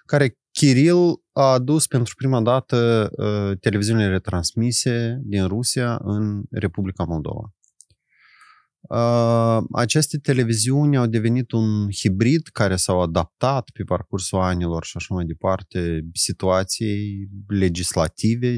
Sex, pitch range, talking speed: male, 100-125 Hz, 105 wpm